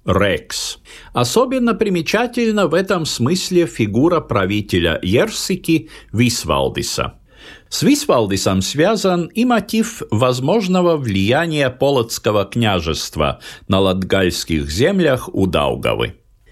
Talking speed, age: 85 wpm, 50-69